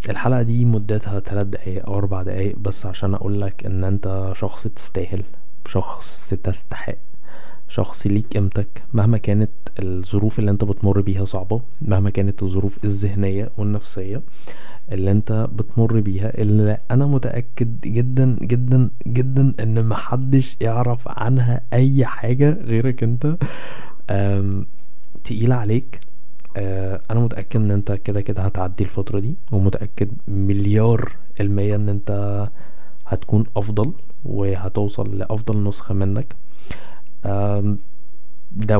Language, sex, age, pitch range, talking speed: Arabic, male, 20-39, 100-120 Hz, 115 wpm